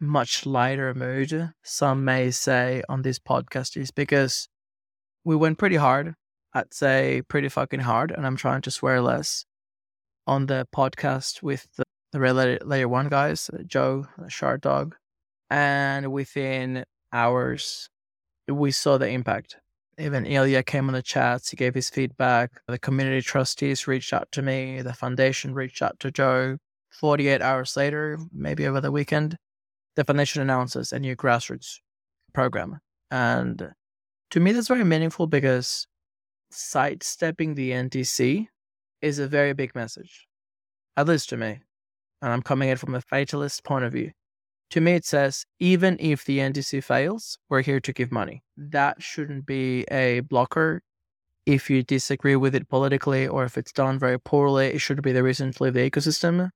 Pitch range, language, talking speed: 125-145 Hz, English, 160 wpm